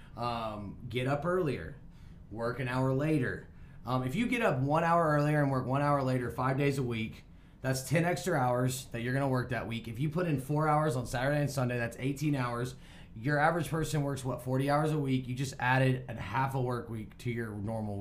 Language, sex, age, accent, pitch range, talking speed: English, male, 30-49, American, 115-145 Hz, 225 wpm